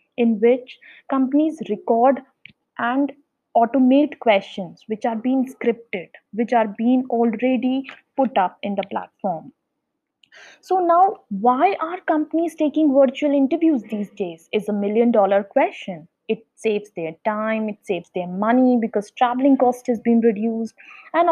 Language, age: English, 20-39